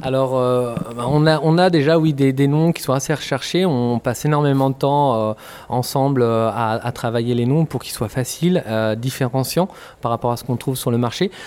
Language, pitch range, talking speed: French, 115-140 Hz, 220 wpm